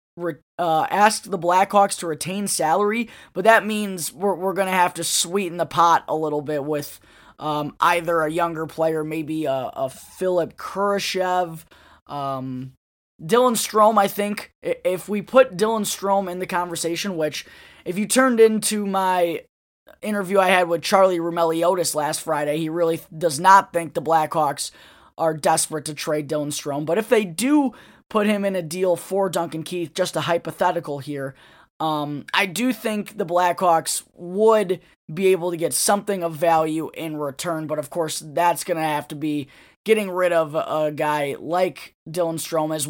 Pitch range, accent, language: 155-195 Hz, American, English